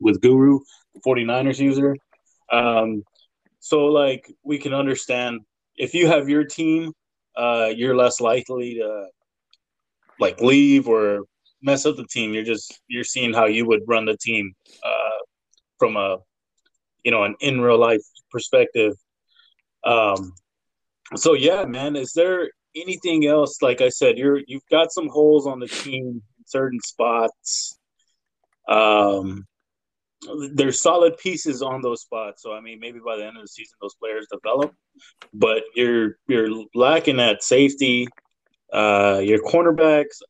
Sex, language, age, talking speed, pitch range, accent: male, English, 20-39, 150 wpm, 110-145 Hz, American